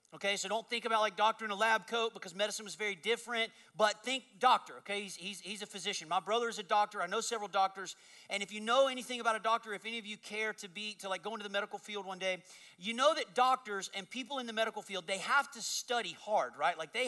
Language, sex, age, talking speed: English, male, 40-59, 265 wpm